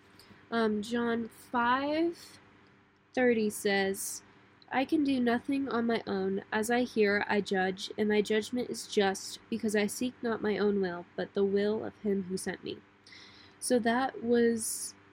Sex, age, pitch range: female, 10-29, 185-235 Hz